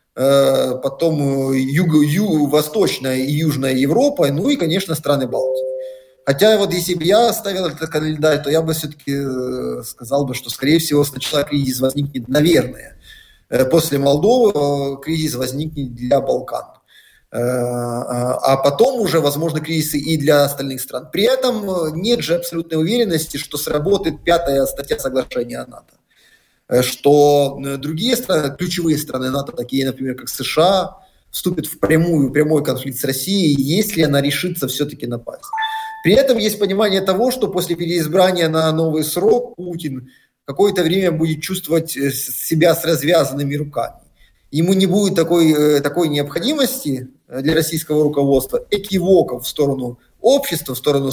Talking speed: 135 wpm